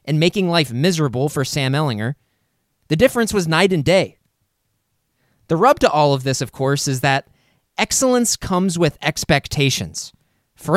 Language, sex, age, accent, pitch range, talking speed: English, male, 20-39, American, 130-170 Hz, 155 wpm